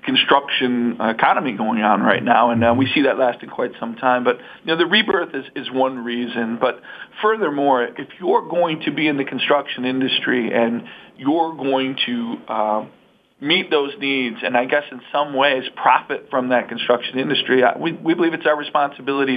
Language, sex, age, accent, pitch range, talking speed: English, male, 40-59, American, 120-150 Hz, 185 wpm